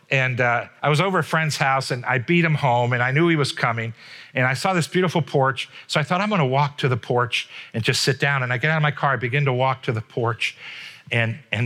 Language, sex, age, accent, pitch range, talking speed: English, male, 50-69, American, 125-160 Hz, 280 wpm